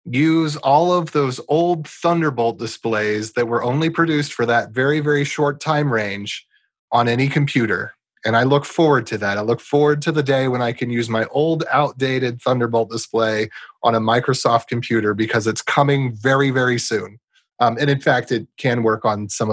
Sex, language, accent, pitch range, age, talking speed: male, English, American, 115-145 Hz, 30-49, 185 wpm